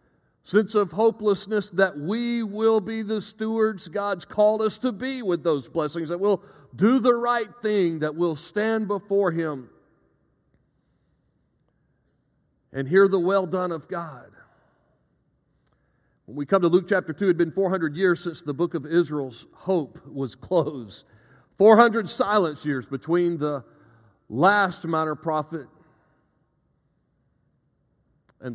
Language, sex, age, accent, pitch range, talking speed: English, male, 50-69, American, 155-195 Hz, 135 wpm